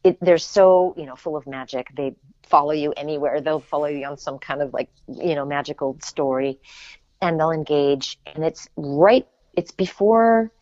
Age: 40-59